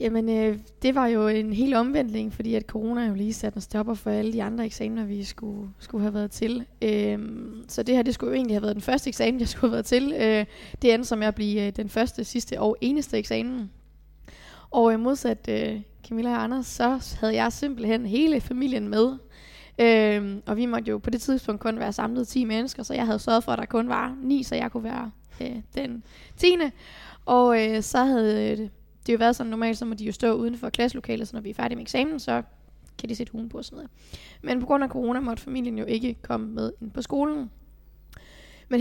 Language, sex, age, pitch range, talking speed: Danish, female, 20-39, 215-245 Hz, 230 wpm